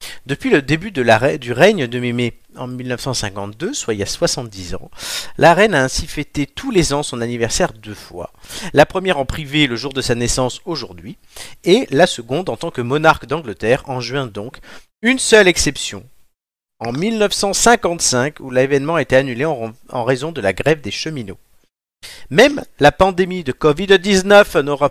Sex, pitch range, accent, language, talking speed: male, 120-165 Hz, French, French, 175 wpm